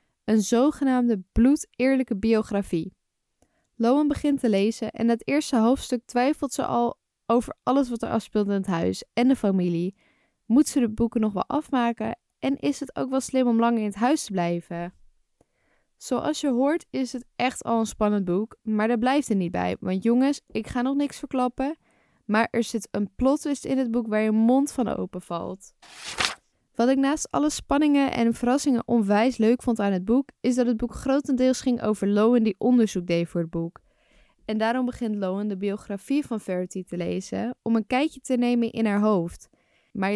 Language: Dutch